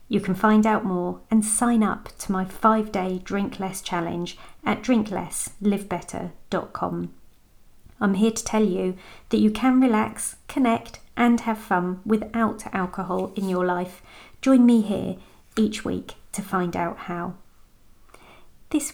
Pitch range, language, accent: 190-225 Hz, English, British